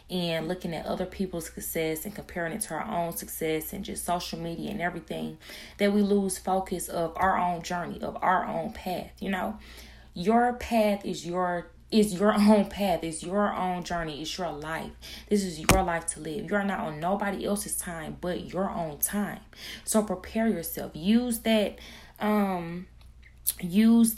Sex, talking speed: female, 170 wpm